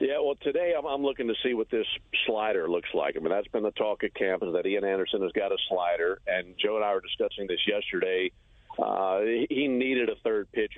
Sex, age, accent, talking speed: male, 50-69, American, 230 wpm